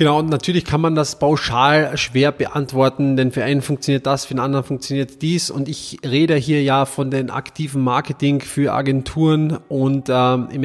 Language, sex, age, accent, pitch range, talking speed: German, male, 20-39, German, 135-160 Hz, 185 wpm